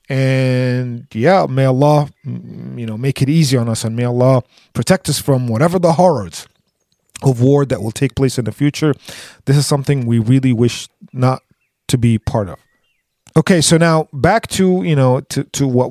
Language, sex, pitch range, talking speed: English, male, 120-150 Hz, 190 wpm